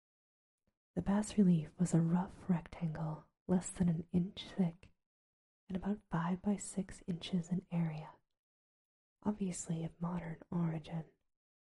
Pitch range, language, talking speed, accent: 160-190 Hz, English, 120 wpm, American